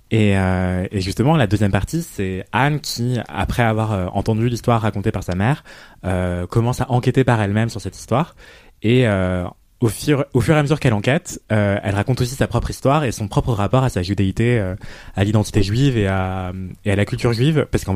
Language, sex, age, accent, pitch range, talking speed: French, male, 20-39, French, 95-125 Hz, 215 wpm